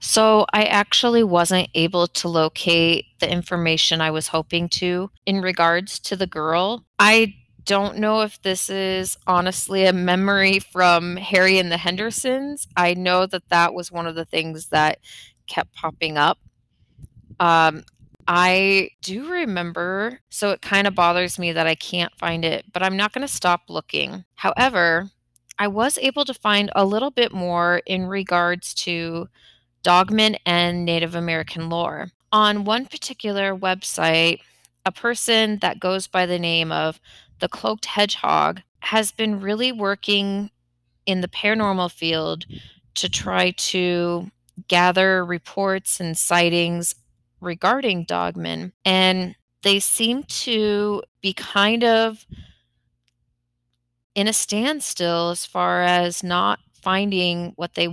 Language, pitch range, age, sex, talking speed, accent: English, 170-205 Hz, 20-39, female, 140 wpm, American